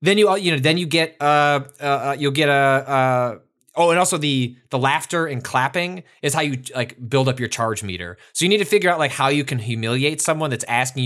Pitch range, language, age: 115-165 Hz, English, 20-39